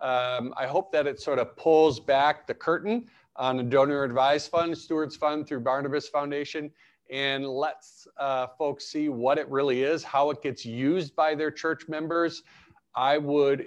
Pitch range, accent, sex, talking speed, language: 125-155 Hz, American, male, 175 wpm, English